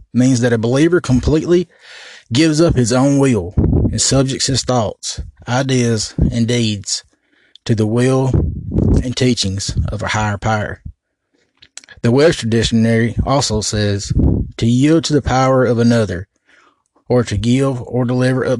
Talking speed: 140 wpm